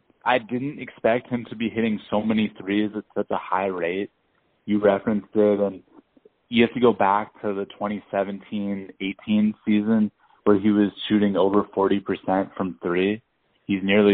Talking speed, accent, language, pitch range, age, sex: 160 wpm, American, English, 95-115 Hz, 20-39, male